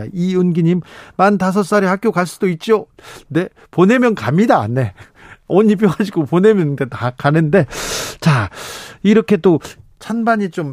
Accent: native